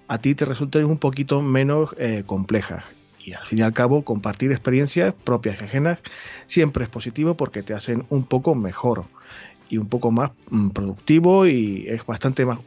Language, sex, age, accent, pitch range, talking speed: Spanish, male, 30-49, Argentinian, 110-155 Hz, 180 wpm